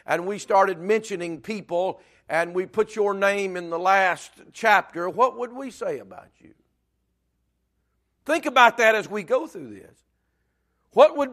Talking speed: 160 wpm